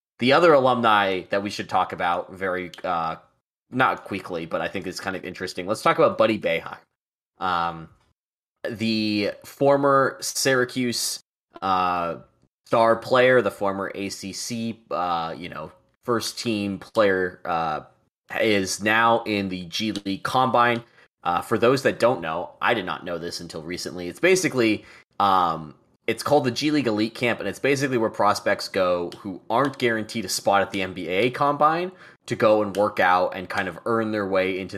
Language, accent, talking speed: English, American, 170 wpm